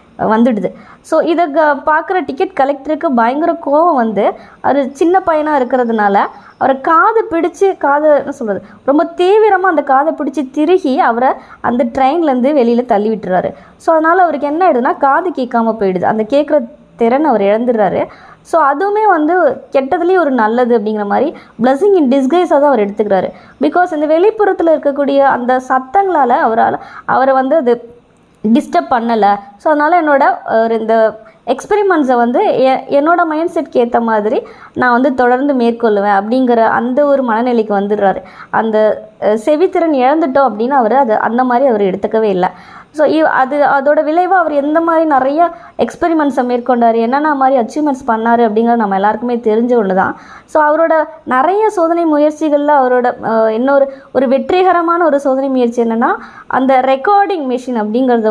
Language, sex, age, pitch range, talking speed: Tamil, male, 20-39, 235-320 Hz, 140 wpm